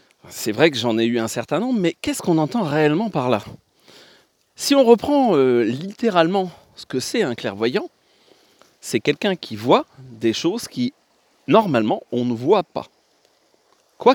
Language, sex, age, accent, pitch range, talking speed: French, male, 30-49, French, 110-175 Hz, 165 wpm